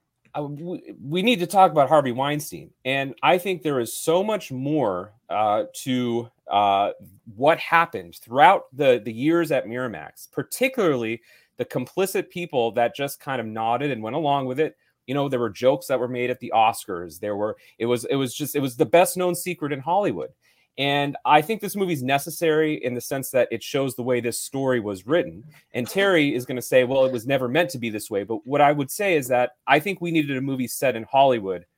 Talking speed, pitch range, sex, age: 220 wpm, 125-175 Hz, male, 30-49